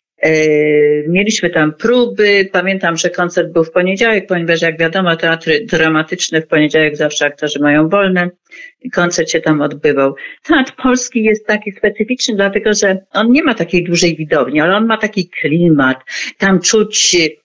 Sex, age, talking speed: female, 50-69, 150 wpm